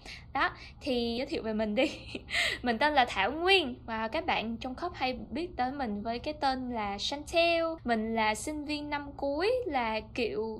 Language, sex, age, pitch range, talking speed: Vietnamese, female, 10-29, 235-320 Hz, 200 wpm